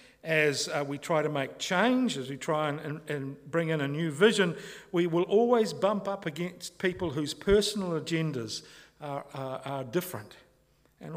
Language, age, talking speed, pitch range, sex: English, 50-69, 175 wpm, 130-180 Hz, male